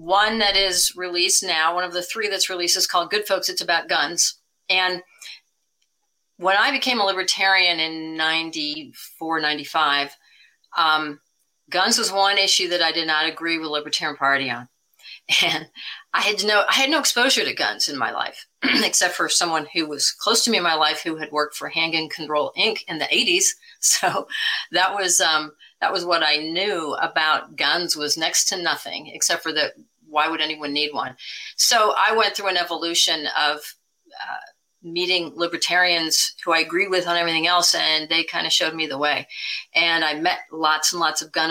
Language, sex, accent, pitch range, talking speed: English, female, American, 155-190 Hz, 190 wpm